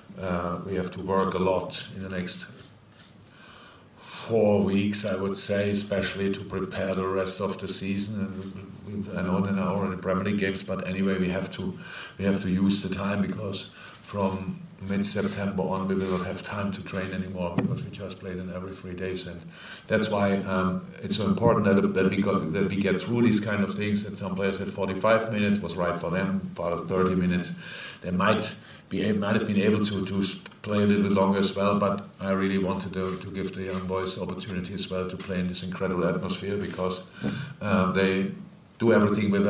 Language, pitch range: English, 95-100 Hz